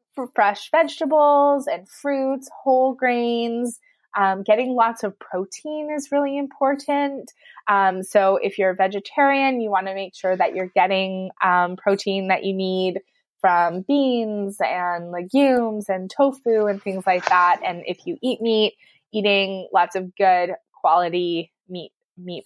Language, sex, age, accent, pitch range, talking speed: English, female, 20-39, American, 185-250 Hz, 145 wpm